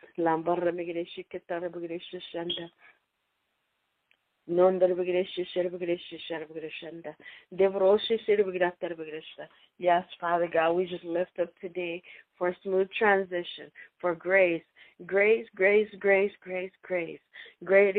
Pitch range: 175-200 Hz